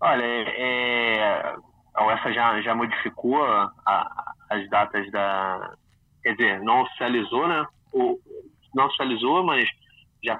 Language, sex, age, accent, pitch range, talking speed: Portuguese, male, 20-39, Brazilian, 105-125 Hz, 125 wpm